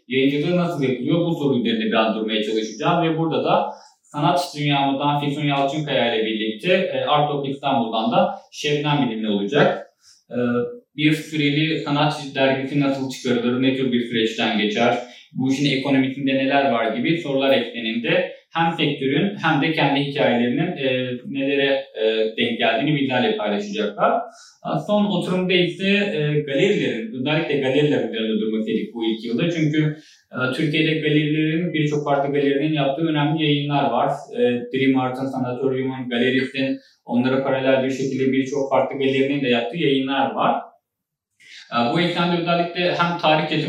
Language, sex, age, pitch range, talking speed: Turkish, male, 30-49, 125-155 Hz, 135 wpm